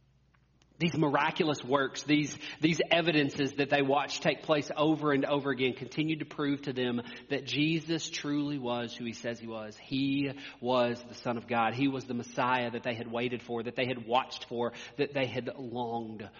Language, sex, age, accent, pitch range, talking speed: English, male, 40-59, American, 120-145 Hz, 195 wpm